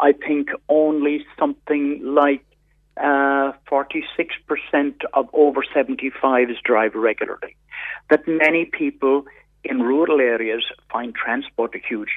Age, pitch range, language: 50-69, 125-160 Hz, English